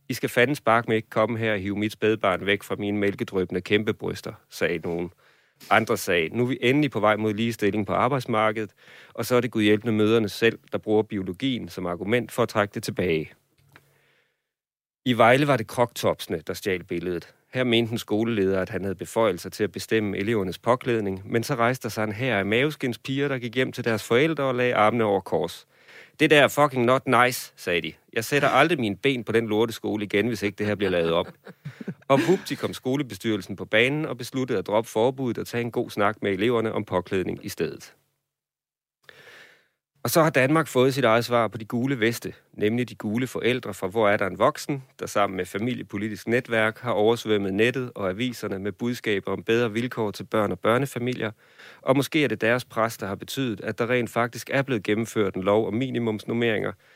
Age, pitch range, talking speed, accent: 30-49, 105-125 Hz, 210 wpm, native